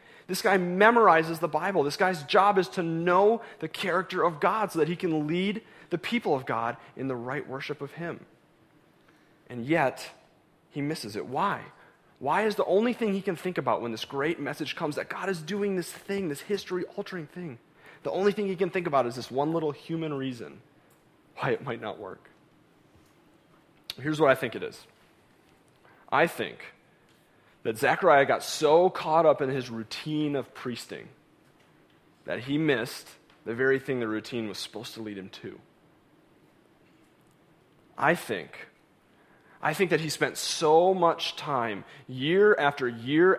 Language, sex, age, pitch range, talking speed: English, male, 30-49, 135-185 Hz, 170 wpm